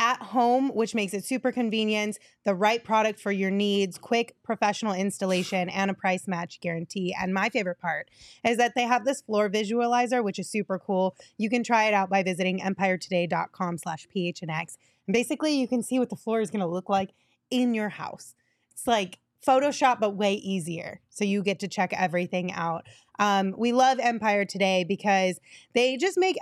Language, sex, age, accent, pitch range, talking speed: English, female, 20-39, American, 185-230 Hz, 190 wpm